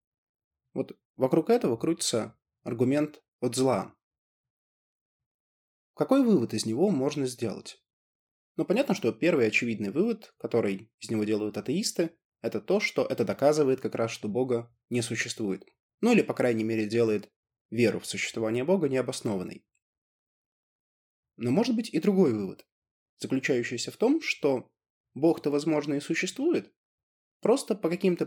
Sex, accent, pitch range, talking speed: male, native, 115-160 Hz, 135 wpm